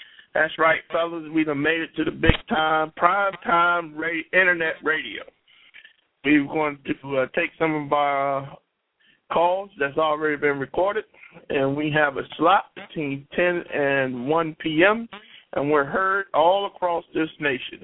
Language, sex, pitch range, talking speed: English, male, 135-170 Hz, 150 wpm